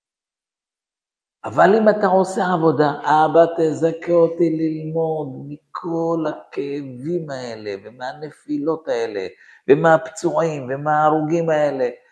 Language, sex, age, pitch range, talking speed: Hebrew, male, 50-69, 160-215 Hz, 85 wpm